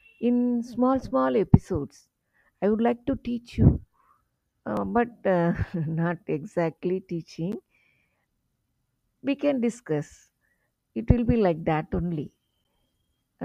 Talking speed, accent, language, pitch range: 115 wpm, Indian, English, 145-225 Hz